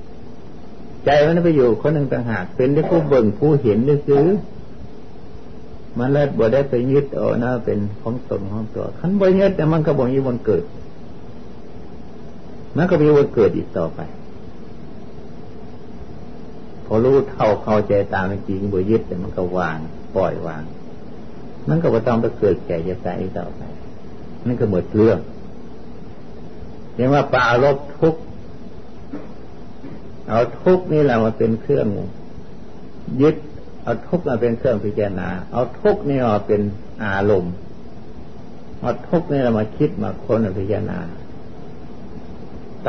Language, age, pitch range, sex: Thai, 60-79, 105-145 Hz, male